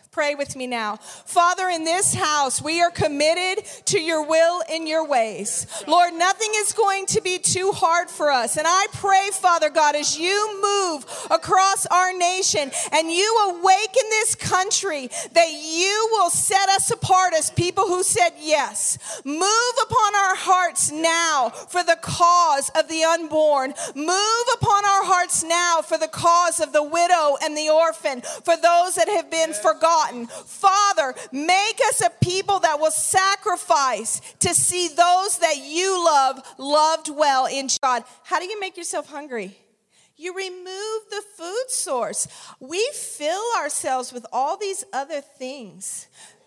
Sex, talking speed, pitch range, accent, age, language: female, 160 wpm, 275-370 Hz, American, 40-59, English